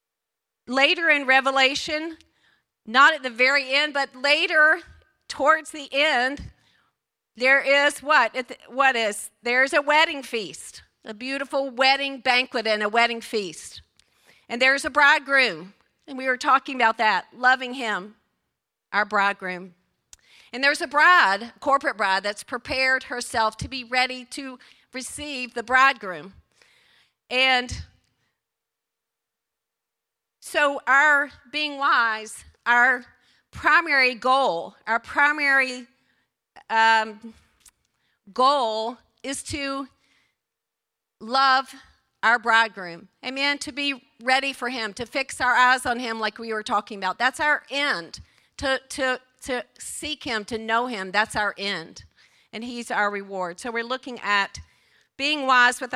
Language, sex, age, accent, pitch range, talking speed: English, female, 40-59, American, 225-275 Hz, 130 wpm